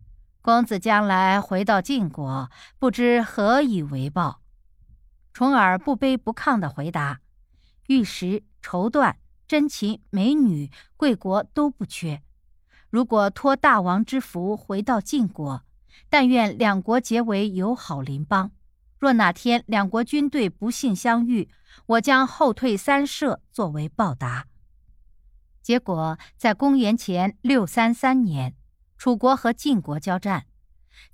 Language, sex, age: Chinese, female, 50-69